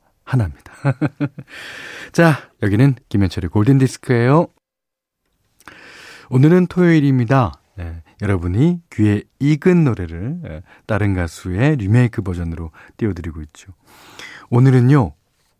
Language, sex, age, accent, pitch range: Korean, male, 40-59, native, 90-140 Hz